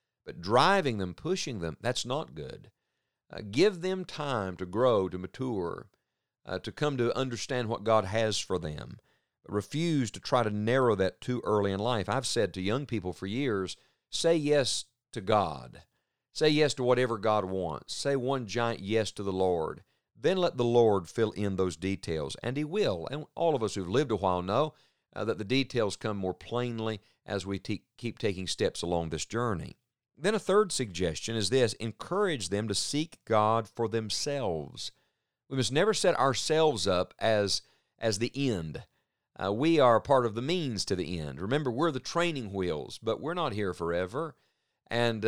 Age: 50-69